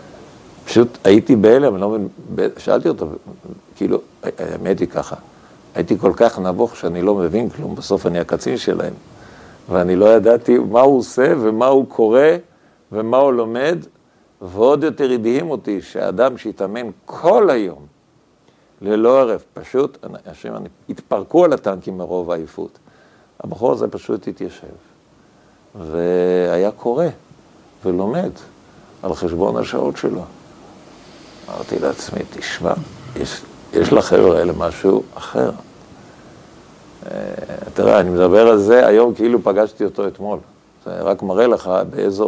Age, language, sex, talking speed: 50-69, Hebrew, male, 130 wpm